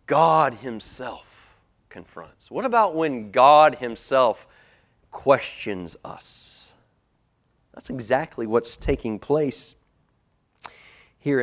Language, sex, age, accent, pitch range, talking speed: English, male, 30-49, American, 140-220 Hz, 85 wpm